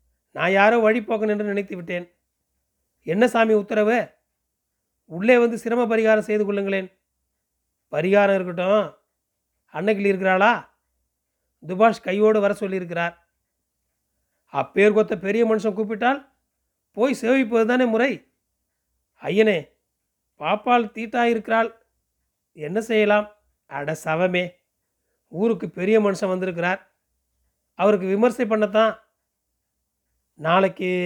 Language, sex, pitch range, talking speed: Tamil, male, 175-220 Hz, 90 wpm